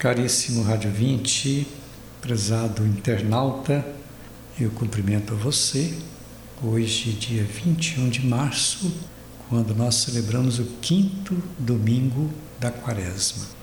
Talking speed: 95 wpm